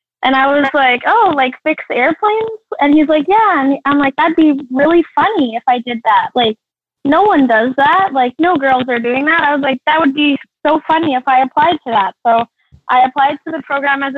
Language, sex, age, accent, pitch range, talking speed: English, female, 10-29, American, 255-315 Hz, 230 wpm